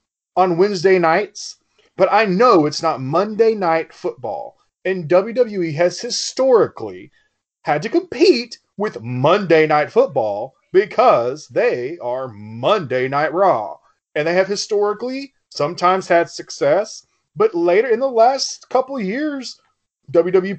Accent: American